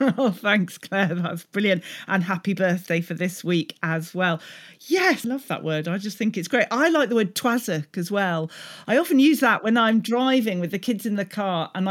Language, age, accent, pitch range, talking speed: English, 40-59, British, 175-240 Hz, 220 wpm